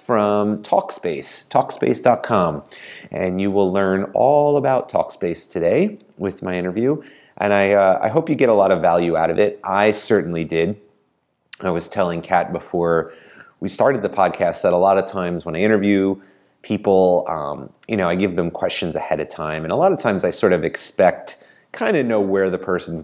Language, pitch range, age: English, 80-105 Hz, 30-49